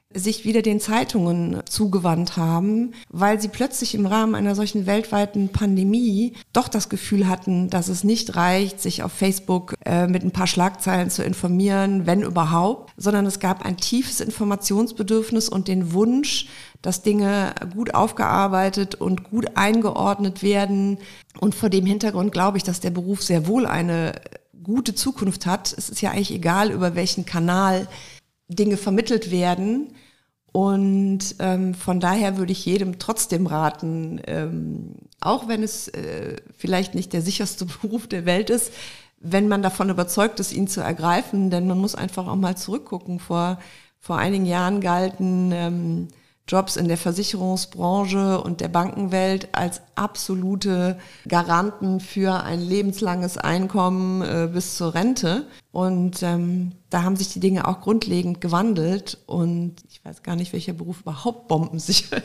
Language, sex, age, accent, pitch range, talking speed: German, female, 50-69, German, 180-205 Hz, 150 wpm